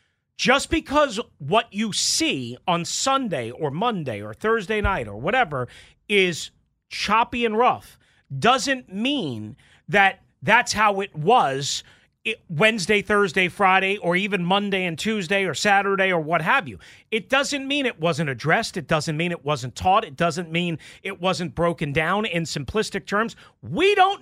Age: 40-59